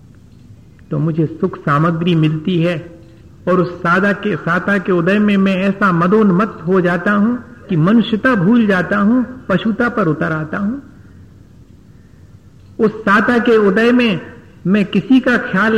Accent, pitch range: native, 160-205 Hz